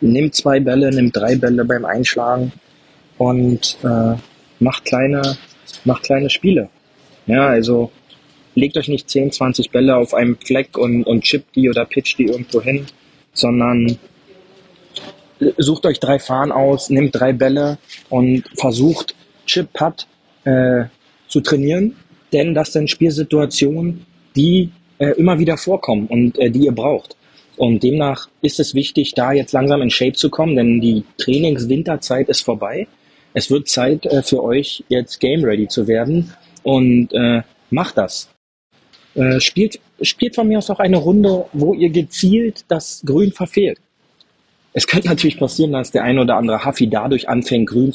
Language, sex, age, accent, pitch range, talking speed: German, male, 20-39, German, 125-155 Hz, 155 wpm